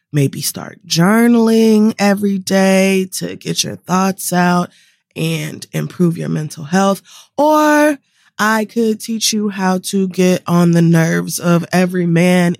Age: 20-39